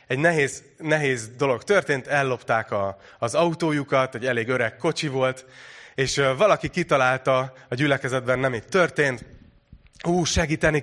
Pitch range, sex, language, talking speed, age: 125-160 Hz, male, Hungarian, 125 wpm, 30-49